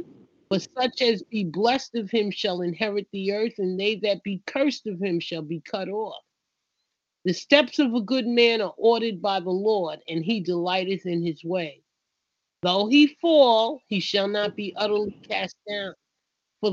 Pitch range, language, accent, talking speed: 190-245 Hz, English, American, 180 wpm